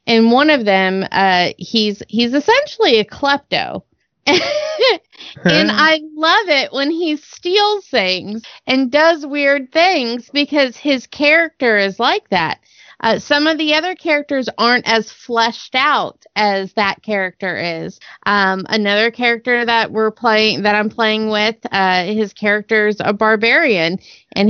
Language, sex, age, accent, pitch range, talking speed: English, female, 30-49, American, 210-275 Hz, 140 wpm